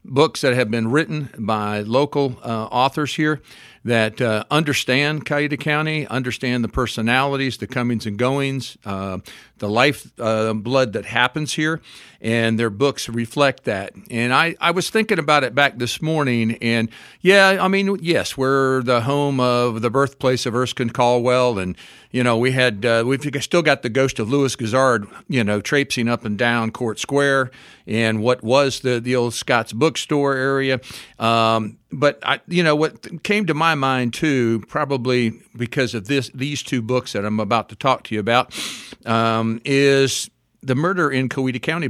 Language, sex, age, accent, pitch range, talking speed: English, male, 50-69, American, 115-140 Hz, 175 wpm